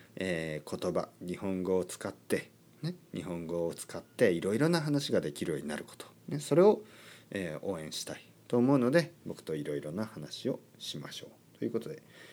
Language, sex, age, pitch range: Japanese, male, 40-59, 90-140 Hz